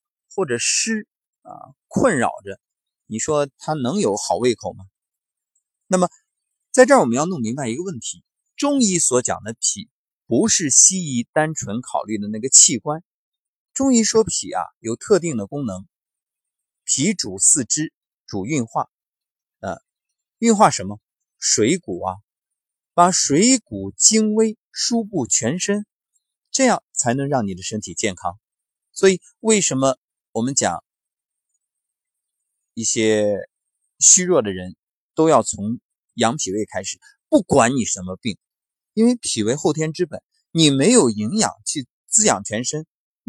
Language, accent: Chinese, native